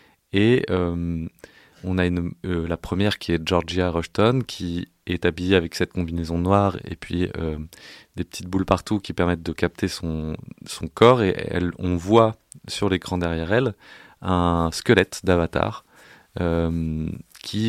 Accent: French